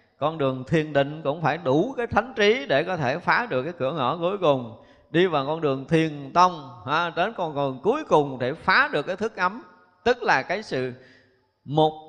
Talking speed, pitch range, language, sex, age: 210 wpm, 125-180 Hz, Vietnamese, male, 20-39